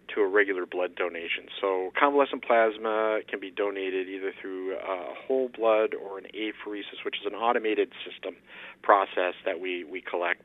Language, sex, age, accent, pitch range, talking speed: English, male, 50-69, American, 95-135 Hz, 165 wpm